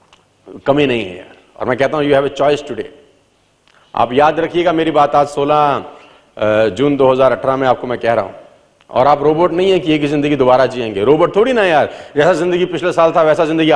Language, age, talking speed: Hindi, 40-59, 220 wpm